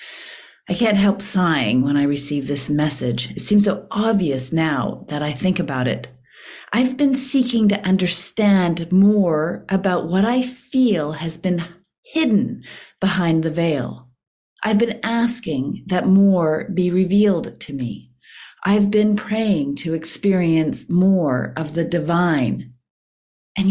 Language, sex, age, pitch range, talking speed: English, female, 40-59, 160-225 Hz, 135 wpm